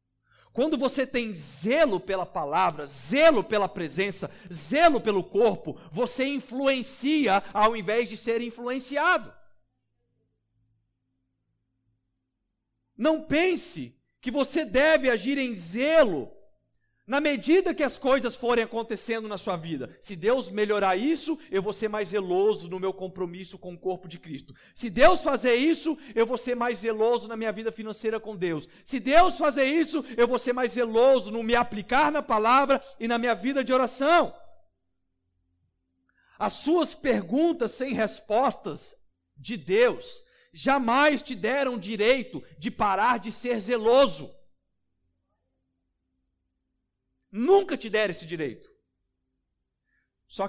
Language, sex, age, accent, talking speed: Portuguese, male, 50-69, Brazilian, 135 wpm